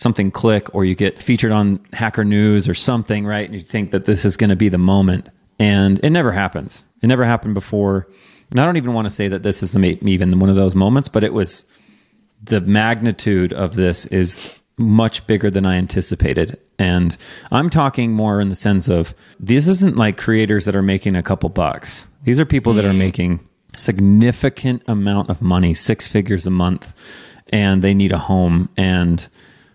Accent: American